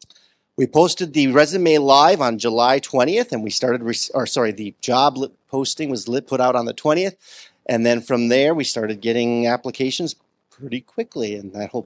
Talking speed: 185 wpm